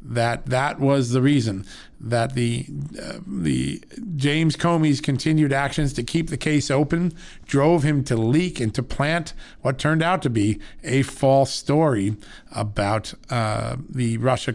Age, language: 50-69, English